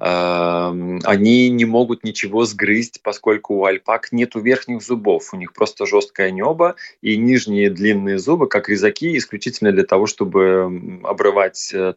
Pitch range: 100-130 Hz